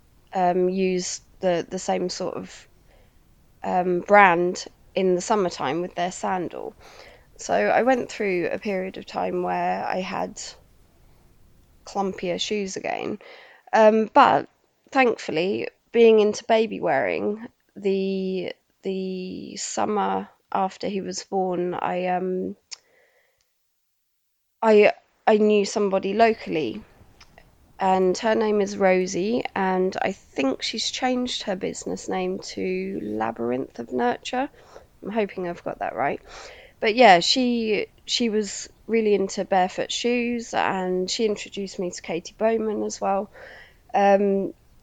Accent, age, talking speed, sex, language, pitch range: British, 20-39, 125 wpm, female, English, 180-225 Hz